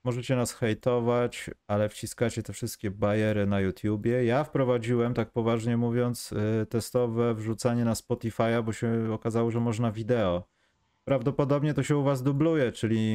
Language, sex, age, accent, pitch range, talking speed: Polish, male, 30-49, native, 100-120 Hz, 145 wpm